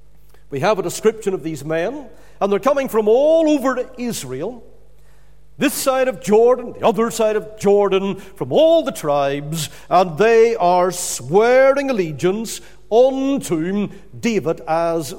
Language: English